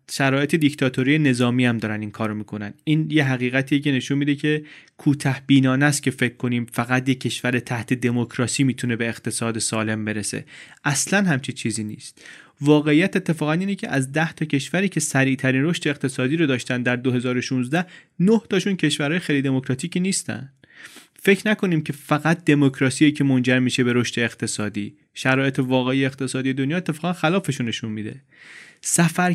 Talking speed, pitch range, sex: 155 wpm, 120-150 Hz, male